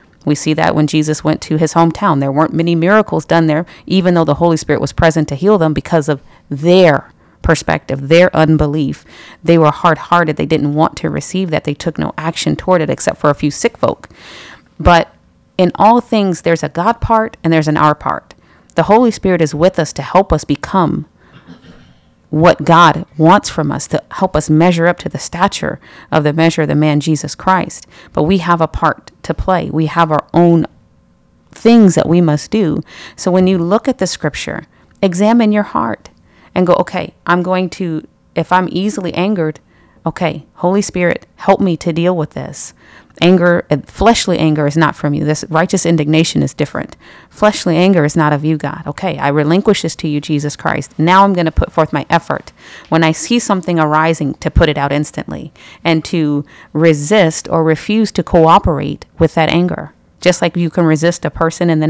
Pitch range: 155-180 Hz